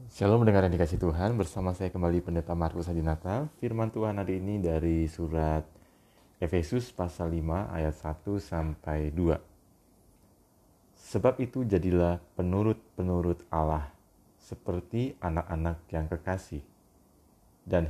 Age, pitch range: 30-49, 80-95 Hz